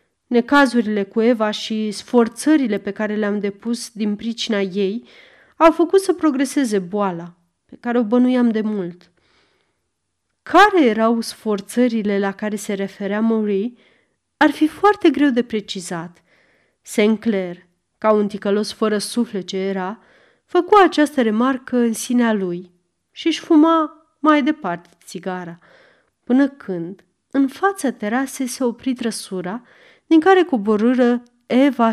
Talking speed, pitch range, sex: 130 wpm, 195-265 Hz, female